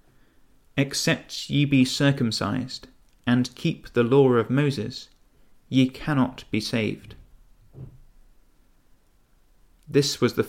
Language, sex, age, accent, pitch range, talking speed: English, male, 30-49, British, 115-140 Hz, 95 wpm